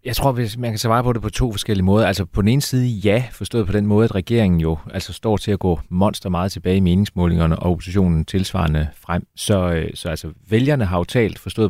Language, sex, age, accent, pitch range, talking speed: Danish, male, 30-49, native, 90-110 Hz, 240 wpm